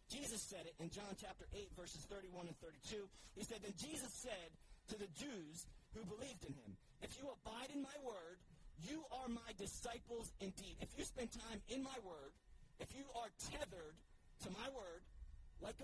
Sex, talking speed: male, 185 wpm